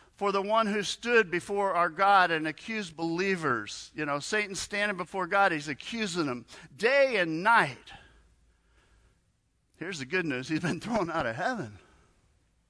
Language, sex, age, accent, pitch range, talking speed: English, male, 50-69, American, 155-230 Hz, 155 wpm